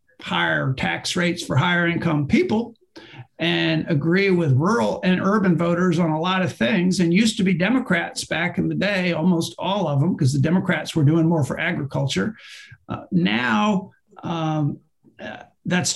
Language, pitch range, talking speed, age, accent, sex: English, 145-175 Hz, 165 wpm, 50-69, American, male